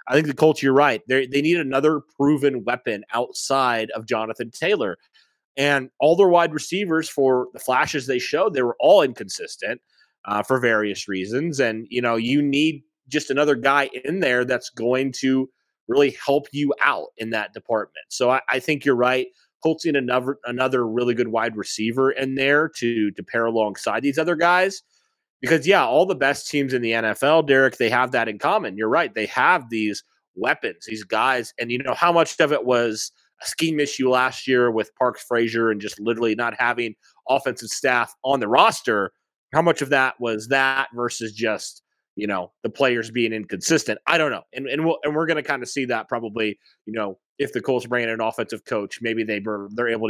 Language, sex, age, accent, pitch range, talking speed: English, male, 30-49, American, 115-145 Hz, 205 wpm